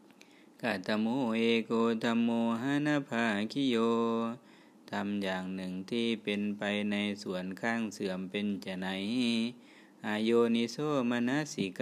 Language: Thai